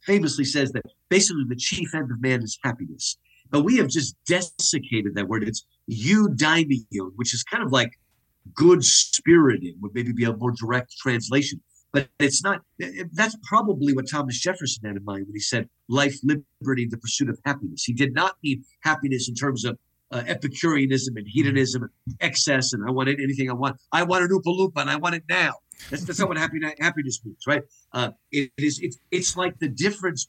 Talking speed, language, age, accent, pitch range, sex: 185 wpm, English, 50-69, American, 125-155 Hz, male